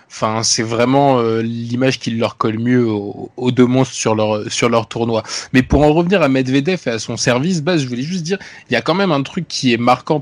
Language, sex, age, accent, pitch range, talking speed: French, male, 20-39, French, 120-145 Hz, 255 wpm